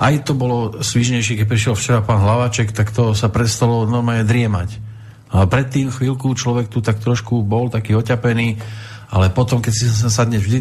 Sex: male